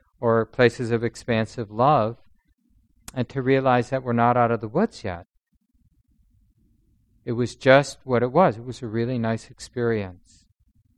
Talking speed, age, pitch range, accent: 155 wpm, 40-59, 110-135 Hz, American